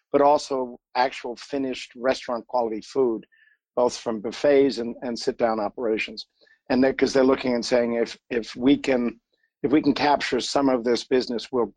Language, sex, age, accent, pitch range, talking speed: English, male, 50-69, American, 115-135 Hz, 170 wpm